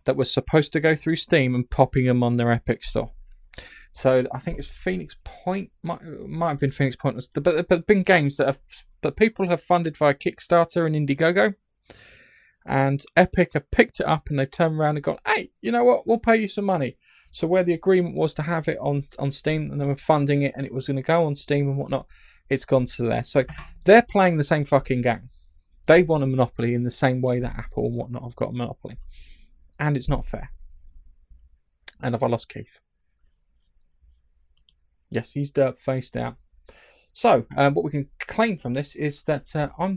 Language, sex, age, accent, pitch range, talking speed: English, male, 20-39, British, 125-160 Hz, 210 wpm